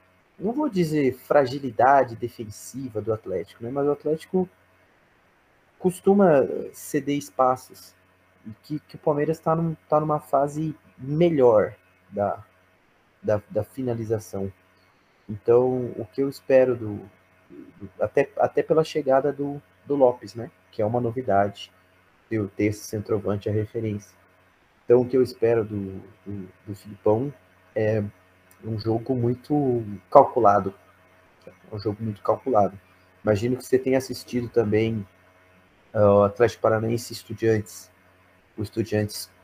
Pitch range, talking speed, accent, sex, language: 95-125 Hz, 130 wpm, Brazilian, male, Portuguese